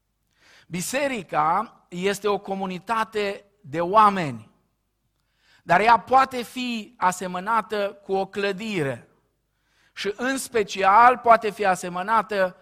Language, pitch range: Romanian, 170-220 Hz